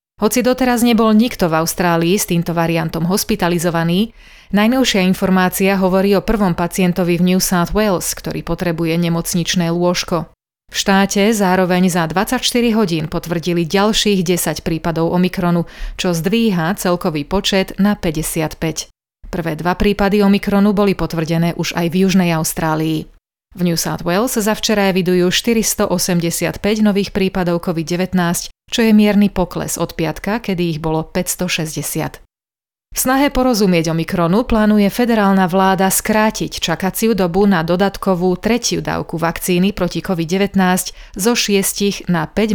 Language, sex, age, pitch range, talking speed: Slovak, female, 30-49, 170-205 Hz, 130 wpm